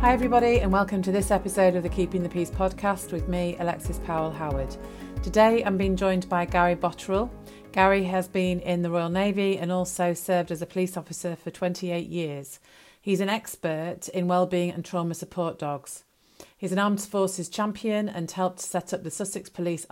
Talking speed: 190 wpm